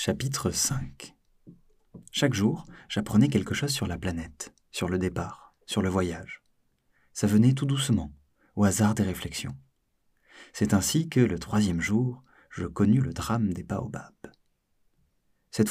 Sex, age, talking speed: male, 40-59, 140 wpm